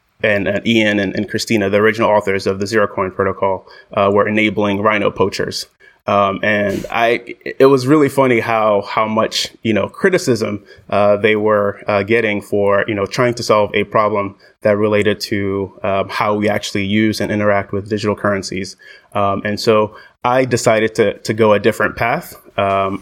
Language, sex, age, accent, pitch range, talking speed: English, male, 20-39, American, 100-110 Hz, 180 wpm